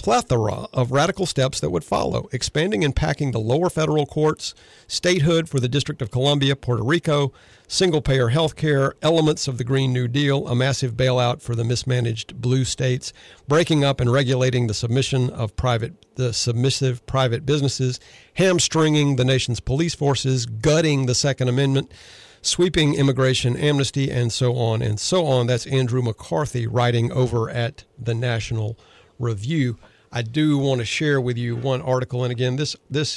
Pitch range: 120-145 Hz